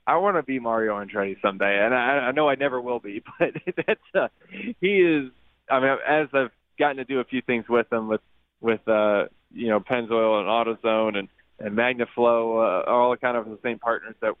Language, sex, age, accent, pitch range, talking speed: English, male, 20-39, American, 105-125 Hz, 210 wpm